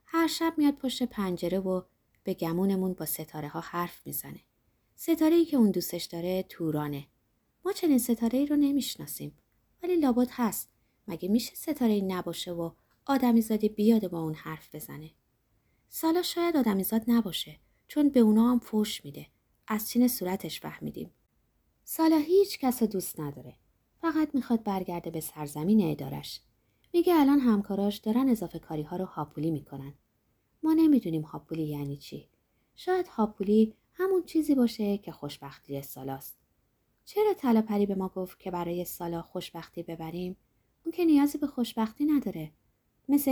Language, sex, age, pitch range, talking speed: Persian, female, 30-49, 160-250 Hz, 145 wpm